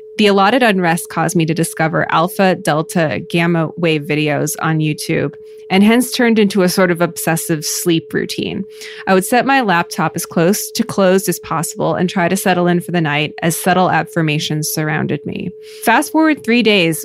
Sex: female